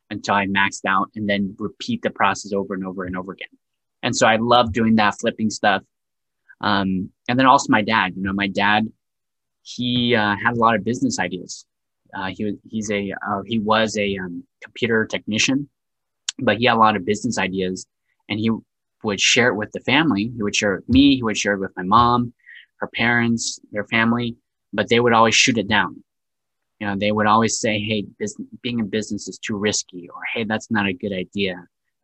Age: 20-39